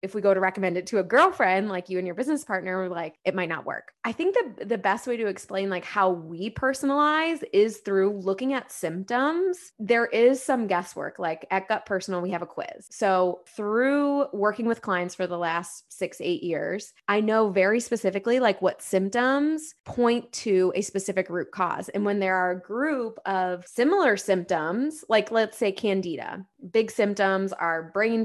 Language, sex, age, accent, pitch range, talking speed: English, female, 20-39, American, 185-240 Hz, 195 wpm